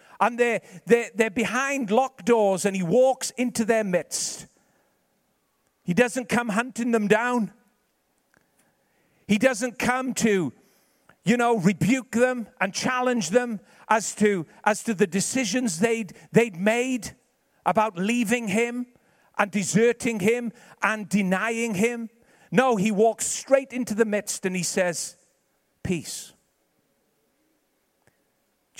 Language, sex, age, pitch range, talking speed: English, male, 50-69, 210-250 Hz, 125 wpm